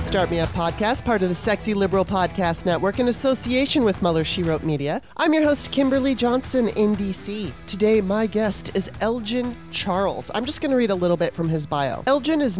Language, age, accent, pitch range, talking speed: English, 30-49, American, 170-235 Hz, 210 wpm